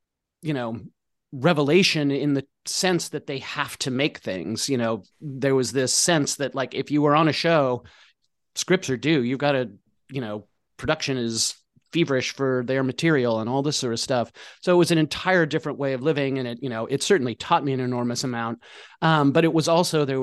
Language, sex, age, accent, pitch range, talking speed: English, male, 30-49, American, 120-145 Hz, 215 wpm